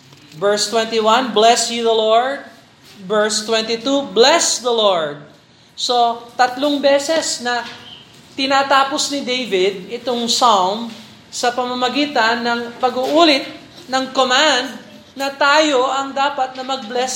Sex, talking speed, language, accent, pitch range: male, 110 wpm, Filipino, native, 200-255 Hz